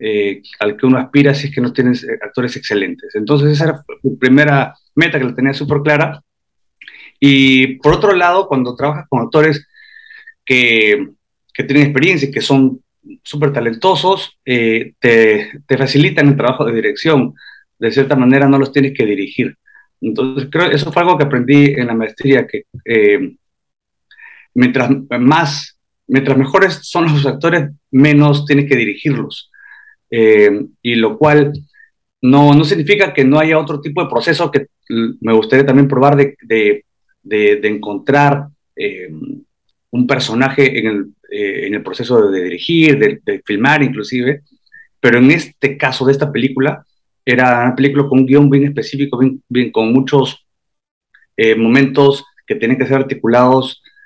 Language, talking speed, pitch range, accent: Spanish, 160 wpm, 125-150 Hz, Mexican